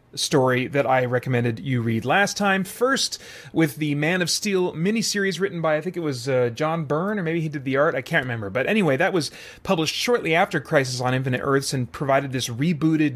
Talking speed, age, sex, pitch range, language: 220 wpm, 30-49, male, 130-170 Hz, English